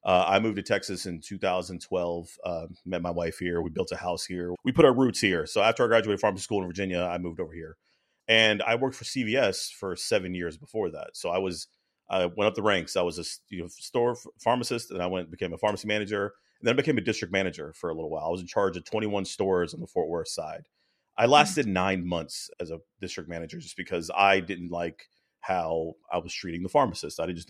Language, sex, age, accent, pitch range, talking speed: English, male, 30-49, American, 90-105 Hz, 240 wpm